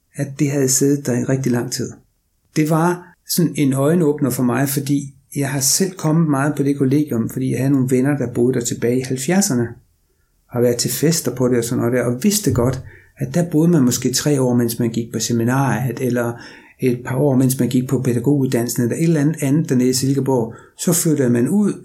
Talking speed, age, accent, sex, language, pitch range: 230 wpm, 60-79, native, male, Danish, 120-145 Hz